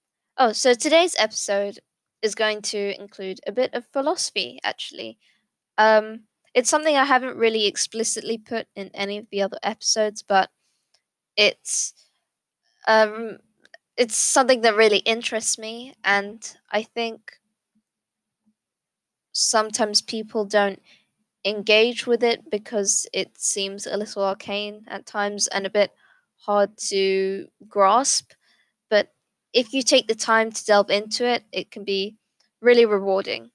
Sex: female